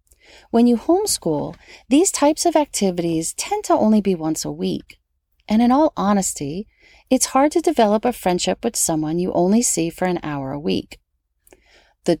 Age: 40-59